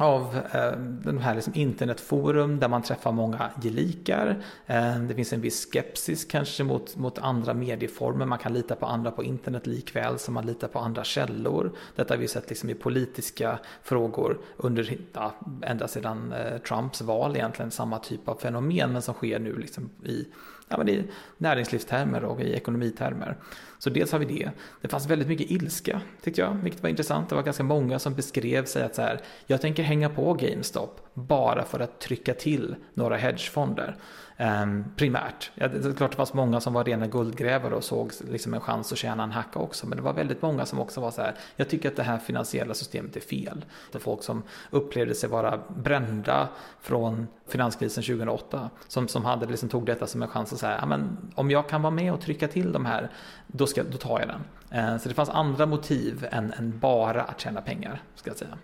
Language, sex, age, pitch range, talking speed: Swedish, male, 30-49, 115-145 Hz, 205 wpm